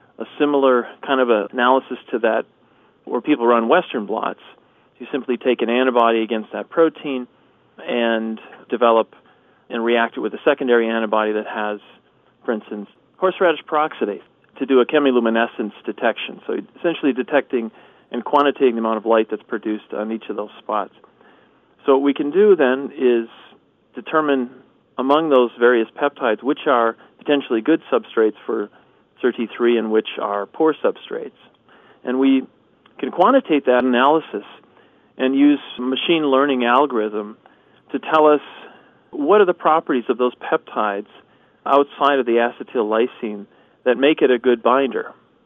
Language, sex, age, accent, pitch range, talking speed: English, male, 40-59, American, 115-145 Hz, 150 wpm